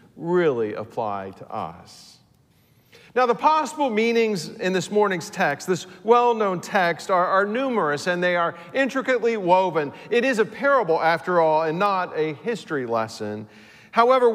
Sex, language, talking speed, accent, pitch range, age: male, English, 145 wpm, American, 160-230 Hz, 40-59